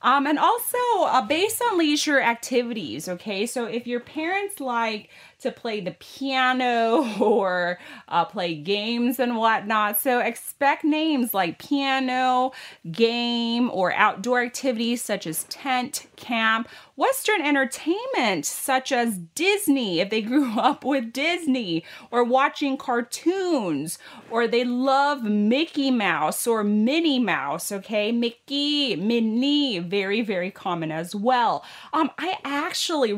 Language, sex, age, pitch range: Thai, female, 30-49, 195-265 Hz